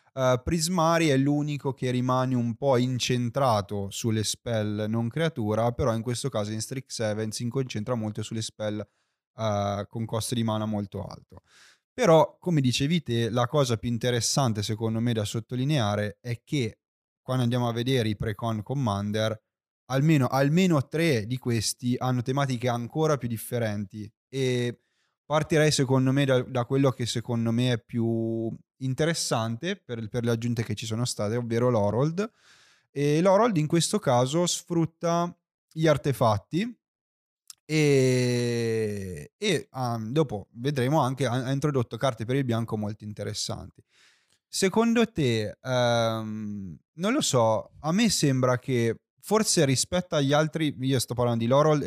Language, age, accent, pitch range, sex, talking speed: Italian, 20-39, native, 115-140 Hz, male, 150 wpm